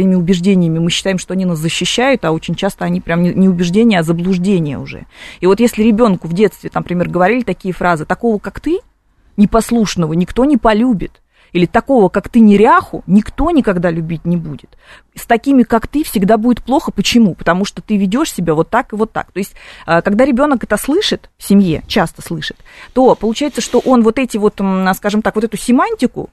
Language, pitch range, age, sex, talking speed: Russian, 185-240 Hz, 30-49, female, 190 wpm